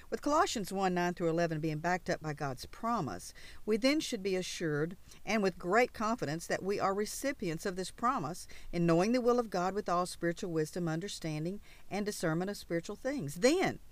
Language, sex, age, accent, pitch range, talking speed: English, female, 50-69, American, 165-220 Hz, 185 wpm